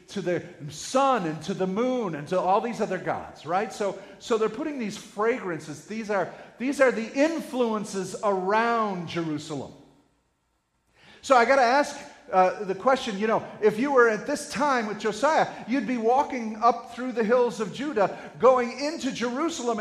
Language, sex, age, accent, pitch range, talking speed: English, male, 40-59, American, 185-270 Hz, 175 wpm